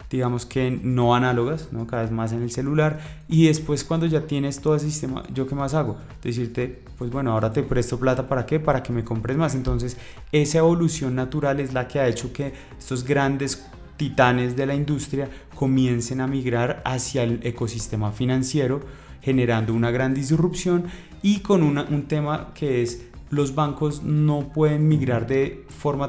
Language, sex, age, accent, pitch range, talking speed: Spanish, male, 20-39, Colombian, 120-145 Hz, 180 wpm